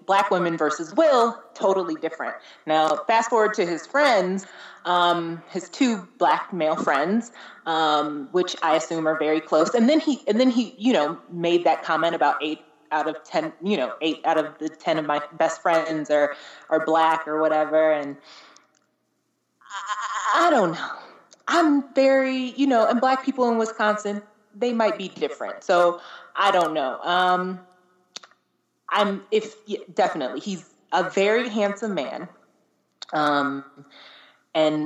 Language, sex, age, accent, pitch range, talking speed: English, female, 20-39, American, 155-205 Hz, 155 wpm